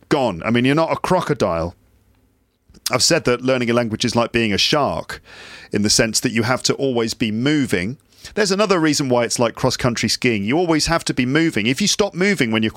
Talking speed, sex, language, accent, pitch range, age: 230 wpm, male, English, British, 110-160 Hz, 40-59